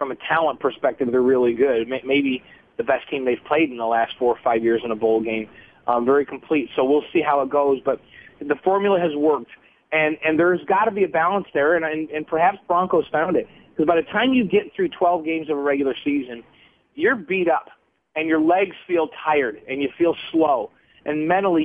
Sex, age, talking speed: male, 30-49, 225 wpm